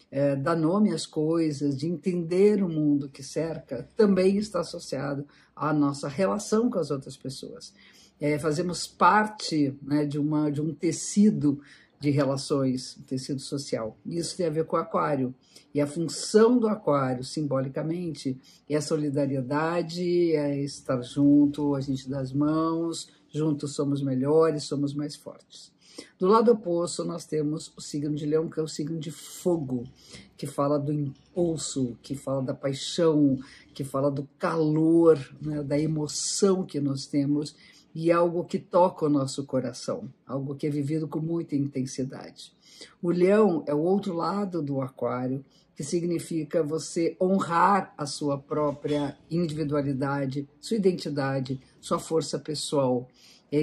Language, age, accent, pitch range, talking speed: Portuguese, 50-69, Brazilian, 140-170 Hz, 150 wpm